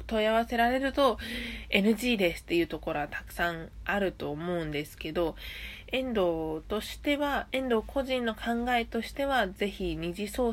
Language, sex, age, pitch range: Japanese, female, 20-39, 170-220 Hz